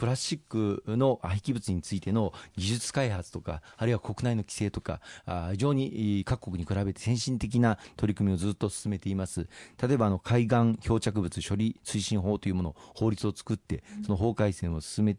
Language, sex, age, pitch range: Japanese, male, 40-59, 95-115 Hz